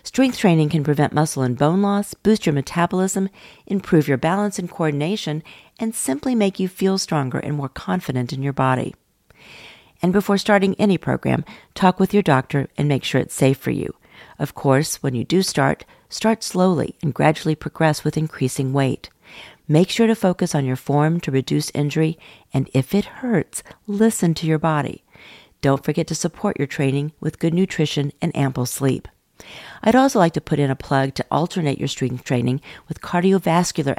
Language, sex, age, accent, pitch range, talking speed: English, female, 50-69, American, 135-185 Hz, 180 wpm